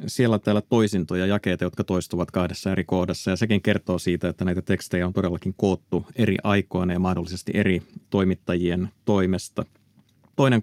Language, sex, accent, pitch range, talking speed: Finnish, male, native, 95-115 Hz, 160 wpm